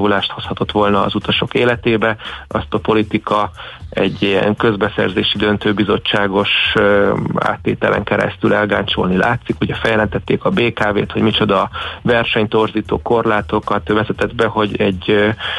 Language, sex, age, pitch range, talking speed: Hungarian, male, 30-49, 105-115 Hz, 105 wpm